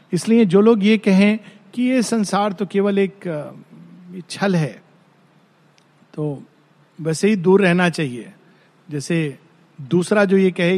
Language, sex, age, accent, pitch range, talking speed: Hindi, male, 50-69, native, 160-215 Hz, 135 wpm